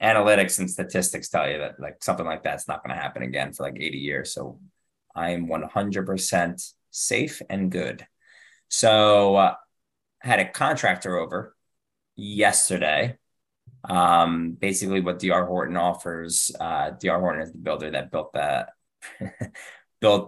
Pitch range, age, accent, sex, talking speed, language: 85-100 Hz, 20-39, American, male, 140 wpm, English